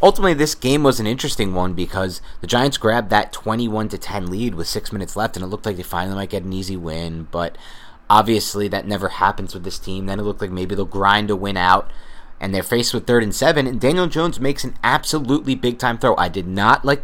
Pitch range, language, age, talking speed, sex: 95-130 Hz, English, 30-49, 240 wpm, male